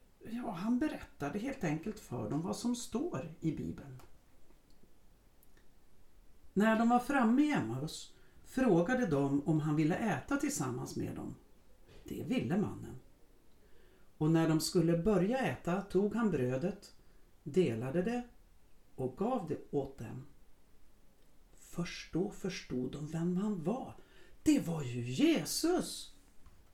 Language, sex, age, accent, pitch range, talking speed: Swedish, female, 60-79, native, 135-230 Hz, 130 wpm